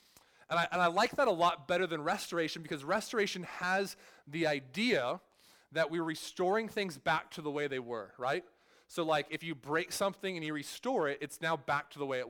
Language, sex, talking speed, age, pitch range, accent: English, male, 210 wpm, 20-39, 145-180 Hz, American